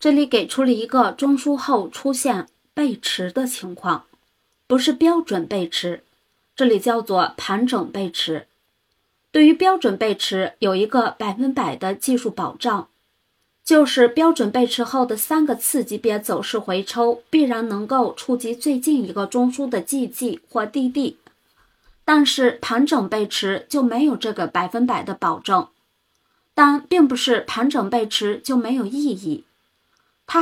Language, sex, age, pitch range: Chinese, female, 30-49, 210-280 Hz